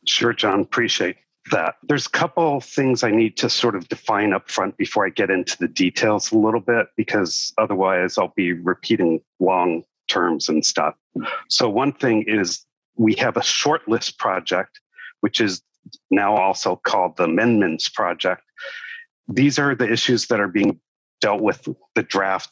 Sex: male